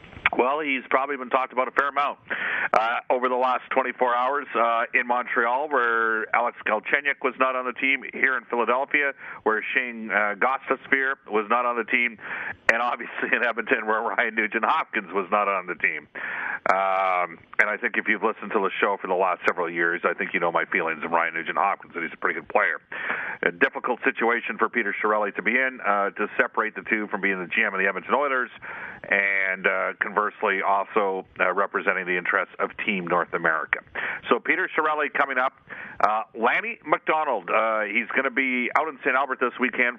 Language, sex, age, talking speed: English, male, 50-69, 205 wpm